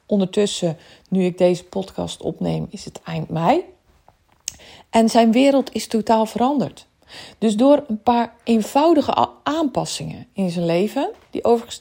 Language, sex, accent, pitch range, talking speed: Dutch, female, Dutch, 175-230 Hz, 135 wpm